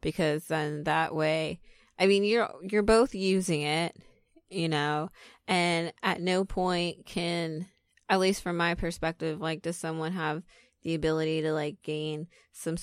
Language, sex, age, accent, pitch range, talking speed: English, female, 20-39, American, 150-175 Hz, 155 wpm